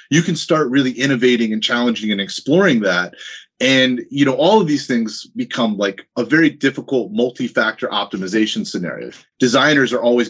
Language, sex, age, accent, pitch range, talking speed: English, male, 30-49, American, 110-155 Hz, 150 wpm